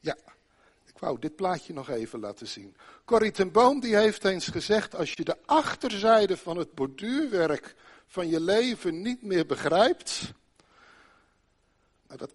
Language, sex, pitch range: Dutch, male, 140-205 Hz